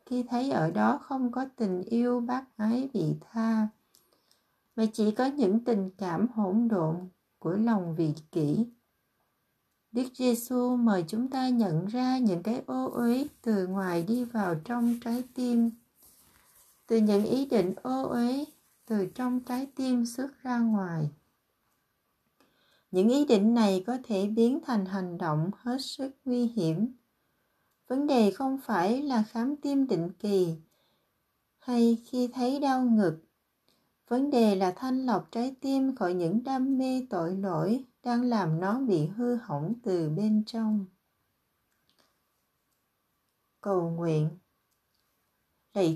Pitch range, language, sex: 190-255 Hz, Vietnamese, female